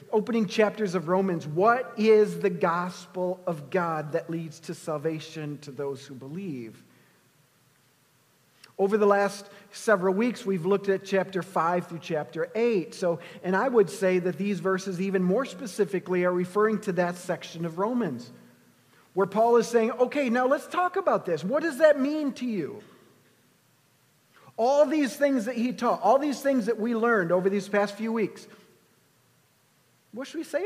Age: 50-69